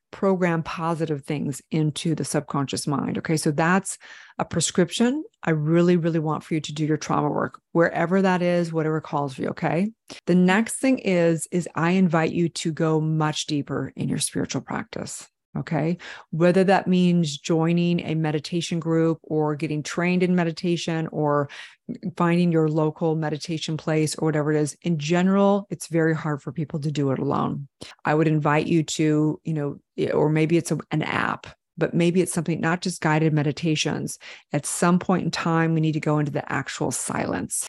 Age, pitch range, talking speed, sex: 30-49, 155-175 Hz, 180 wpm, female